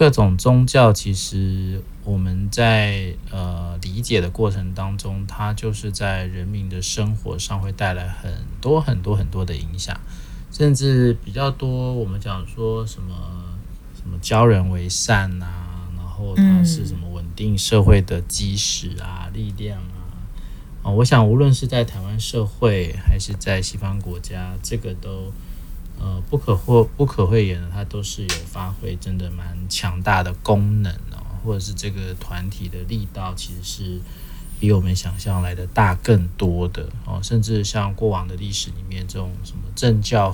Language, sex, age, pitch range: Chinese, male, 20-39, 90-110 Hz